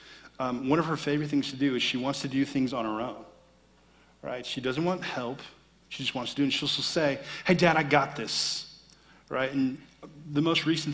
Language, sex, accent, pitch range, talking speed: English, male, American, 125-180 Hz, 230 wpm